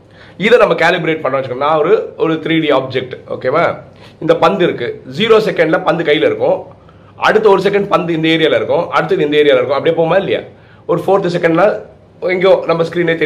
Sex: male